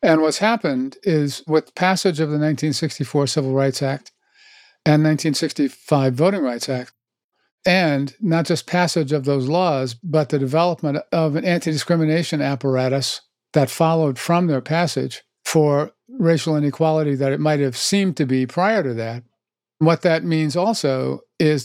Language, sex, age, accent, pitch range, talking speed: English, male, 50-69, American, 140-170 Hz, 150 wpm